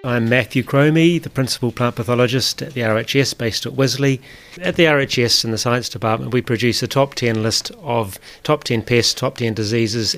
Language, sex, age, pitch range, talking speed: English, male, 30-49, 115-140 Hz, 195 wpm